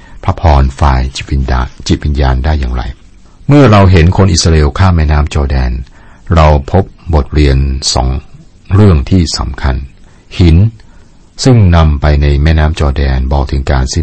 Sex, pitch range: male, 70-90 Hz